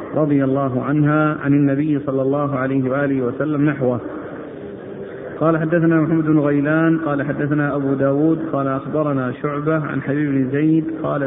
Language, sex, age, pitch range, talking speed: Arabic, male, 50-69, 140-155 Hz, 140 wpm